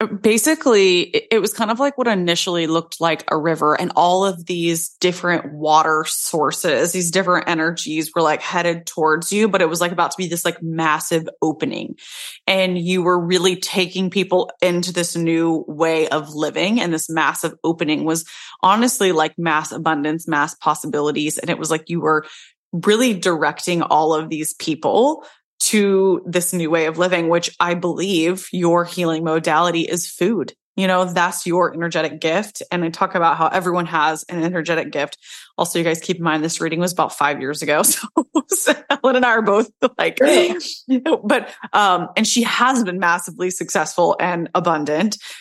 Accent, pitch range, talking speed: American, 165-190 Hz, 180 wpm